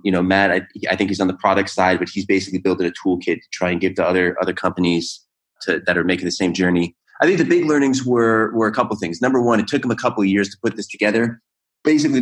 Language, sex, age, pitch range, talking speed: English, male, 30-49, 95-115 Hz, 280 wpm